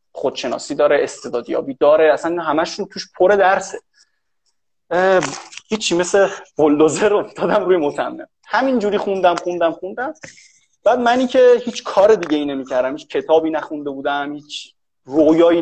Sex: male